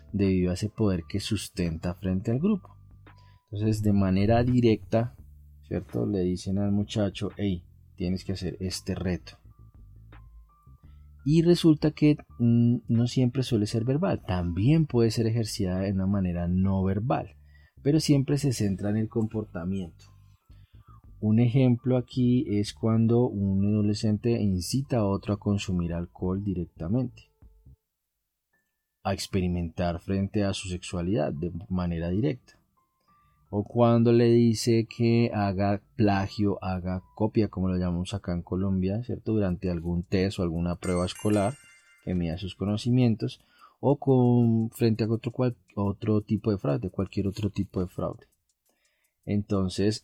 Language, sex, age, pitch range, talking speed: Spanish, male, 30-49, 95-115 Hz, 135 wpm